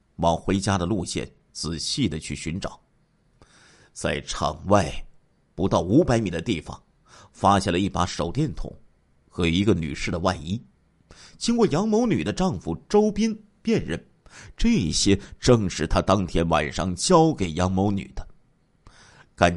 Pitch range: 80-110 Hz